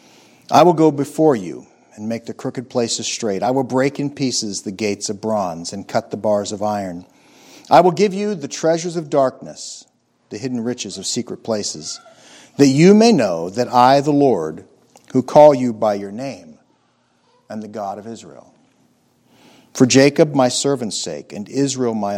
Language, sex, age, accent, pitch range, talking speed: English, male, 60-79, American, 110-150 Hz, 180 wpm